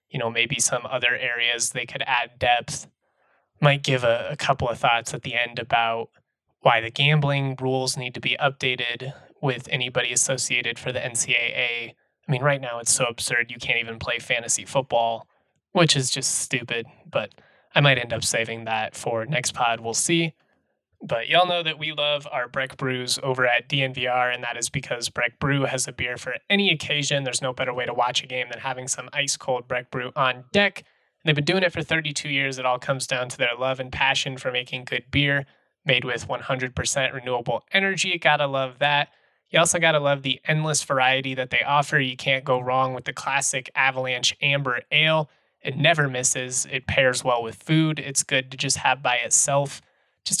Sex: male